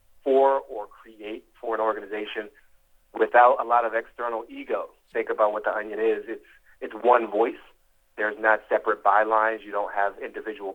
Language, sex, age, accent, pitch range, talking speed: English, male, 40-59, American, 110-145 Hz, 165 wpm